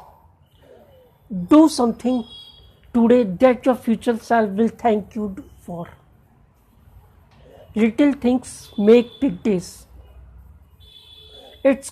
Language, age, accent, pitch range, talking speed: Hindi, 50-69, native, 190-250 Hz, 85 wpm